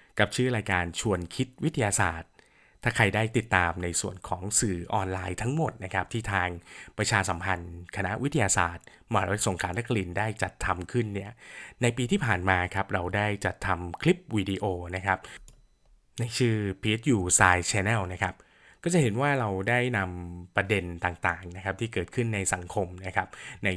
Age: 20-39